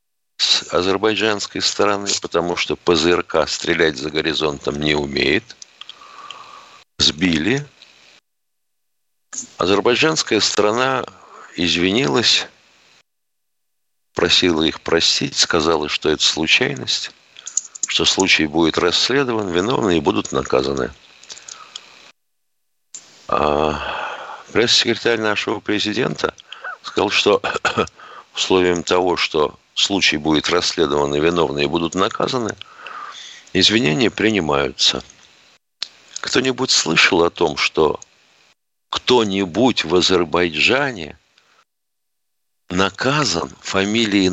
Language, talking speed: Russian, 75 wpm